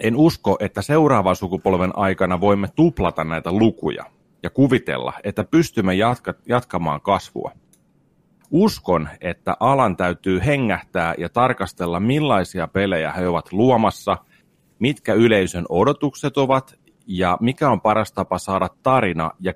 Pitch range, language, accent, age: 90-115 Hz, Finnish, native, 30-49